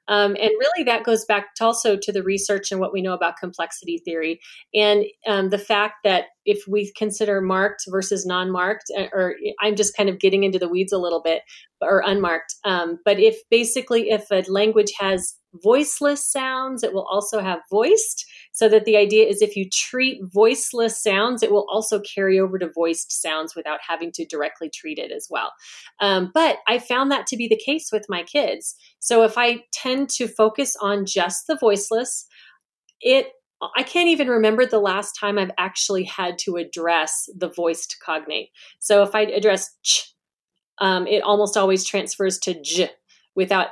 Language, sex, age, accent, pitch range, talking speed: English, female, 30-49, American, 185-225 Hz, 185 wpm